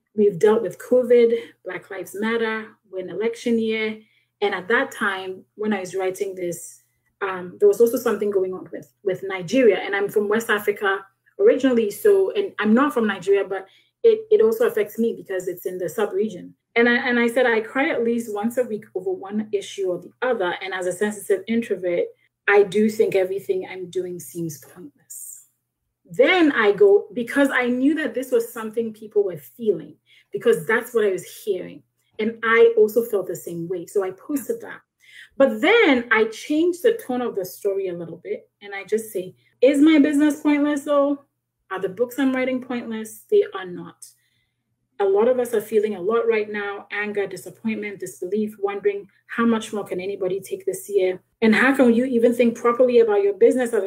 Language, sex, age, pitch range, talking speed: English, female, 30-49, 195-265 Hz, 195 wpm